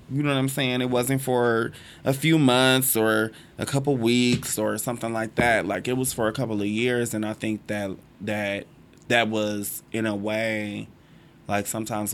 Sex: male